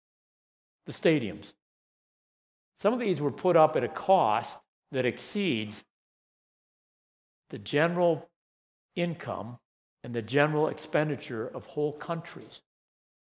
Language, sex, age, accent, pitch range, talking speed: English, male, 60-79, American, 120-160 Hz, 105 wpm